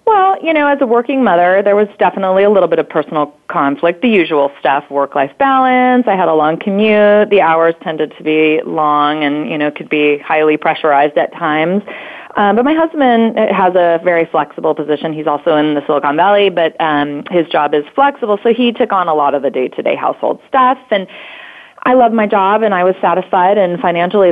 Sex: female